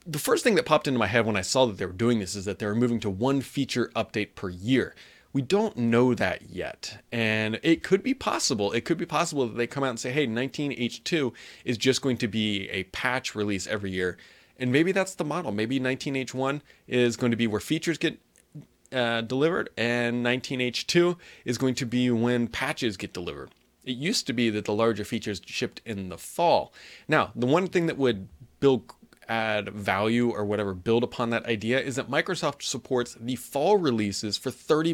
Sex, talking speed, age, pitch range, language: male, 210 wpm, 30-49, 110-135 Hz, English